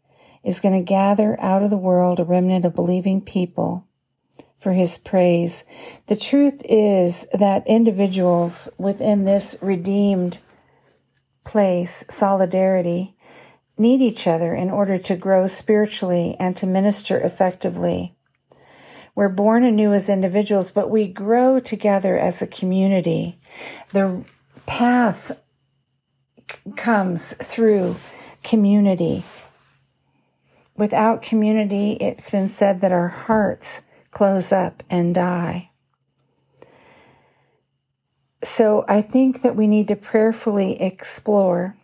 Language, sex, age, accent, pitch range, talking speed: English, female, 50-69, American, 180-210 Hz, 110 wpm